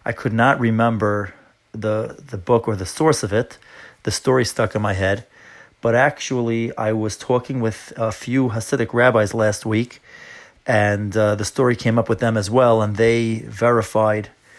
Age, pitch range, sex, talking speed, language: 30-49, 105-120 Hz, male, 175 wpm, English